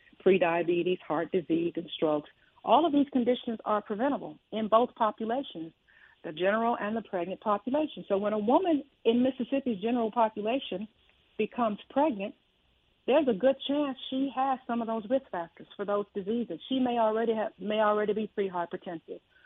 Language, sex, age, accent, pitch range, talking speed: English, female, 60-79, American, 185-245 Hz, 160 wpm